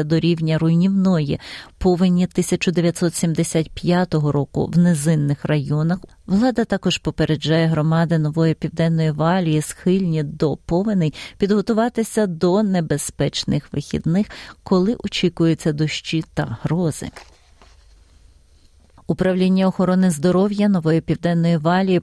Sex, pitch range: female, 160-190 Hz